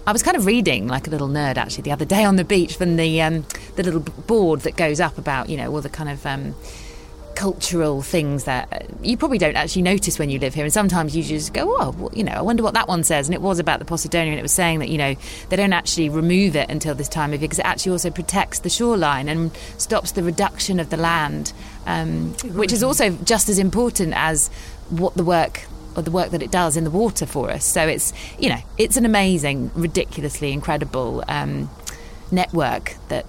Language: English